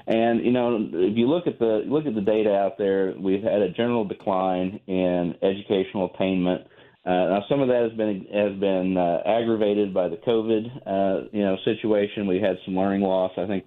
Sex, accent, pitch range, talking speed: male, American, 95-110 Hz, 205 wpm